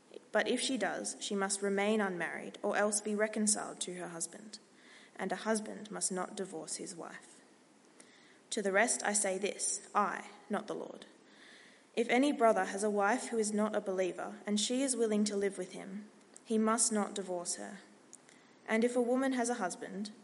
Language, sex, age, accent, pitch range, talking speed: English, female, 20-39, Australian, 185-225 Hz, 190 wpm